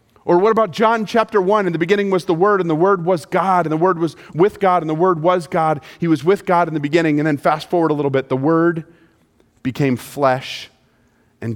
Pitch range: 115-170 Hz